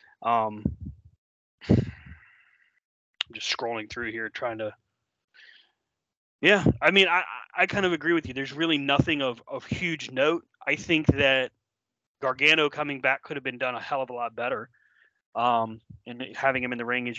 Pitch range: 115-155 Hz